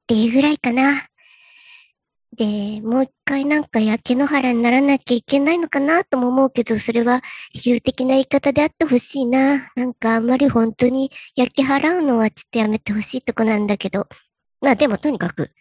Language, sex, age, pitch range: Japanese, male, 40-59, 225-295 Hz